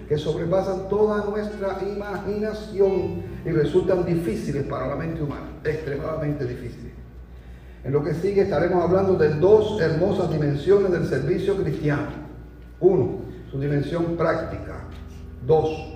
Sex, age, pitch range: male, 40-59, 130-170 Hz